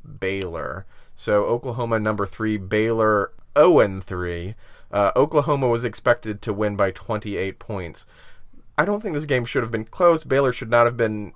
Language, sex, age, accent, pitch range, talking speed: English, male, 30-49, American, 100-135 Hz, 160 wpm